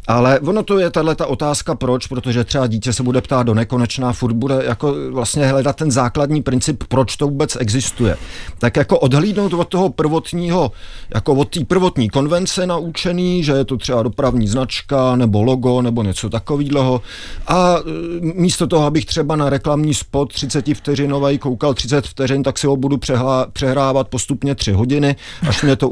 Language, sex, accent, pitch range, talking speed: Czech, male, native, 120-155 Hz, 170 wpm